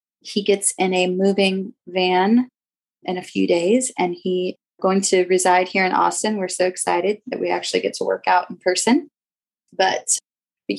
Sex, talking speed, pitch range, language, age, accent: female, 180 wpm, 175-225 Hz, English, 20-39, American